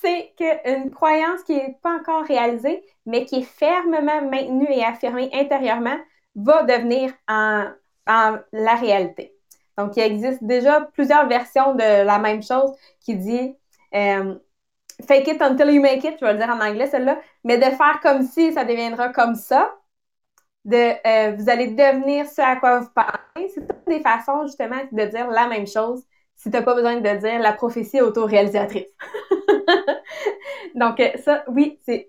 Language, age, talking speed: English, 20-39, 175 wpm